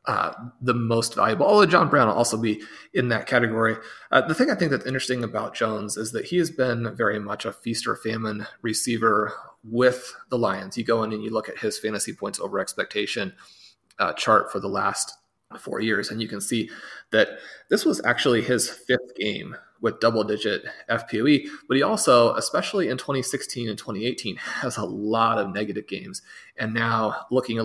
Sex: male